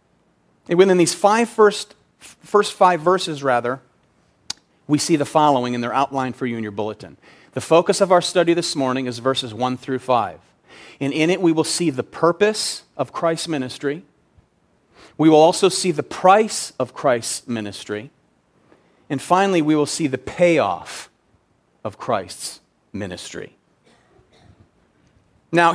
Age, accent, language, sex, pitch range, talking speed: 40-59, American, English, male, 135-180 Hz, 150 wpm